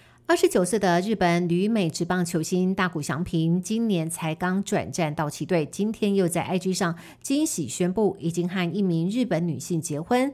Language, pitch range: Chinese, 165-200 Hz